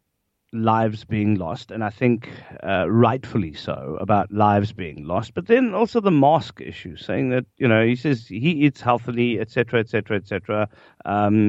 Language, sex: English, male